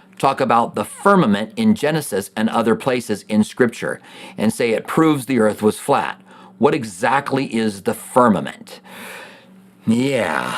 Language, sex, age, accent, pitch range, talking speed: English, male, 50-69, American, 110-180 Hz, 140 wpm